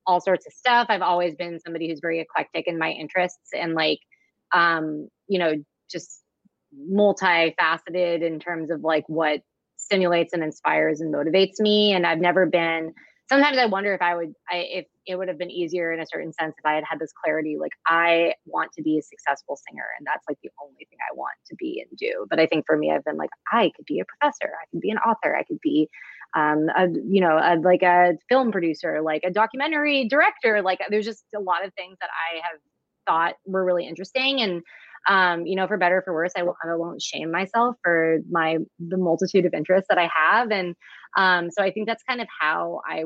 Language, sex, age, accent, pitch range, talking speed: English, female, 20-39, American, 165-210 Hz, 225 wpm